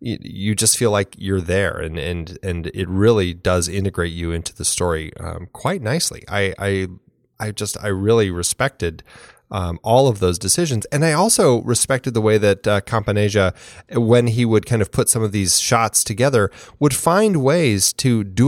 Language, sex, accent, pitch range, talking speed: English, male, American, 95-115 Hz, 185 wpm